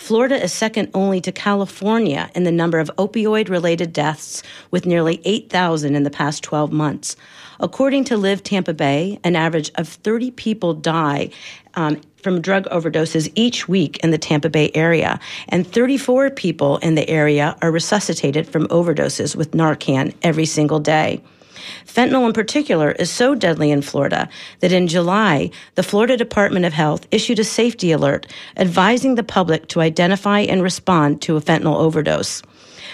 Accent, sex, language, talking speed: American, female, English, 160 wpm